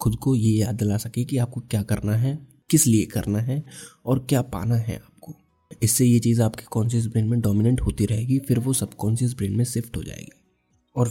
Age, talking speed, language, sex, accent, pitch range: 20-39, 210 wpm, Hindi, male, native, 110-130 Hz